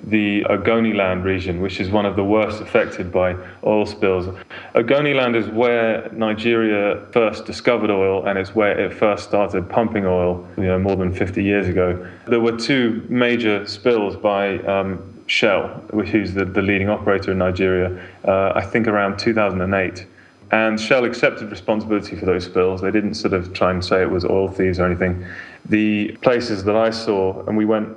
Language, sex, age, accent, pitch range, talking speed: English, male, 30-49, British, 95-110 Hz, 180 wpm